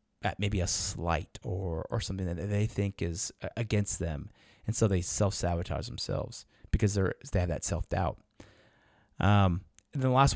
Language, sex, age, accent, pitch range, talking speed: English, male, 30-49, American, 95-120 Hz, 175 wpm